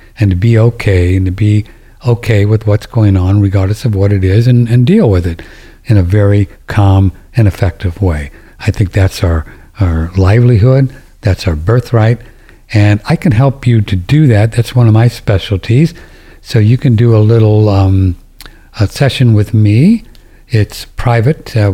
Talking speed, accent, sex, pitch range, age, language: 180 wpm, American, male, 100-120 Hz, 60-79, English